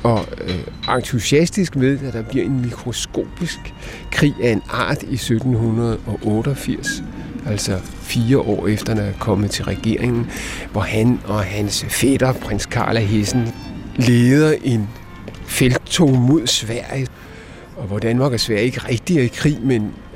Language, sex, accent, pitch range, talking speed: Danish, male, native, 105-130 Hz, 145 wpm